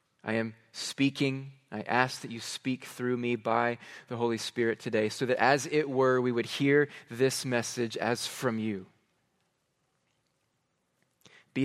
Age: 20-39